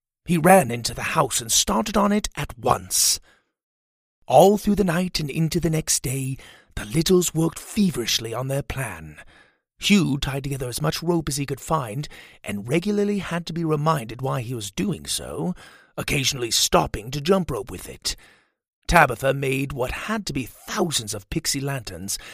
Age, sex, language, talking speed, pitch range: 30-49, male, English, 175 wpm, 125-170 Hz